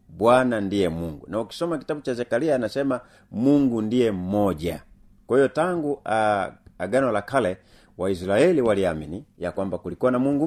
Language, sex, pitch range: Swahili, male, 90-120 Hz